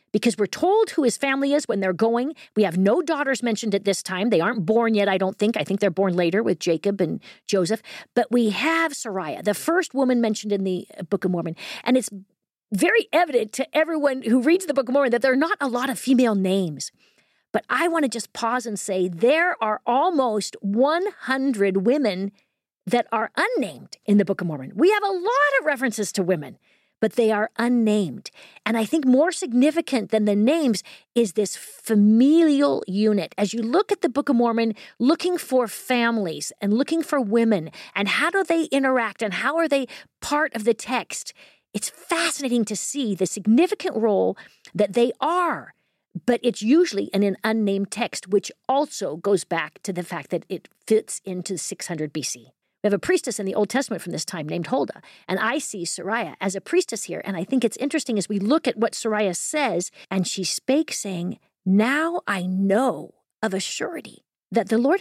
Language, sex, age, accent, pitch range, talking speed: English, female, 50-69, American, 200-280 Hz, 200 wpm